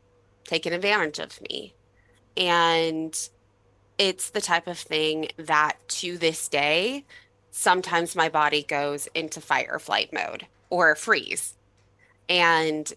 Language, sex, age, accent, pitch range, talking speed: English, female, 20-39, American, 150-180 Hz, 120 wpm